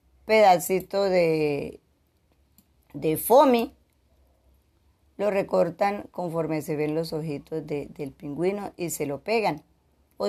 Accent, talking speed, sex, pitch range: American, 110 wpm, female, 135-170 Hz